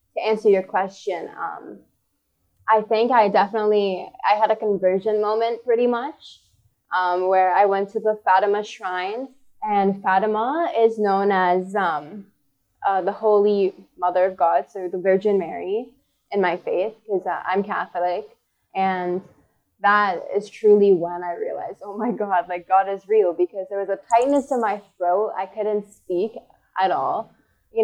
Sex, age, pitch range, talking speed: female, 10-29, 185-215 Hz, 160 wpm